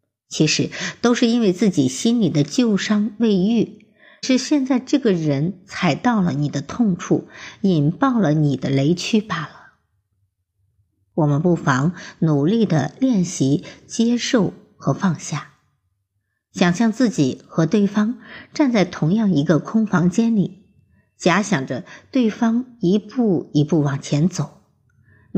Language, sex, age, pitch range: Chinese, male, 60-79, 145-220 Hz